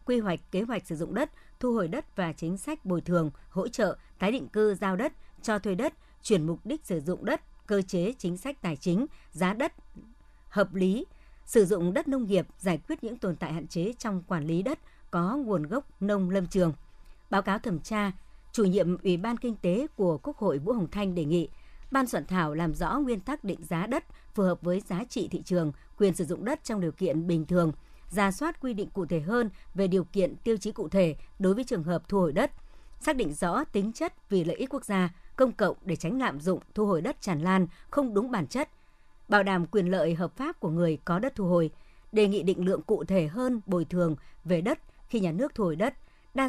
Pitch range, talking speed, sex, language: 175-235 Hz, 235 wpm, male, Vietnamese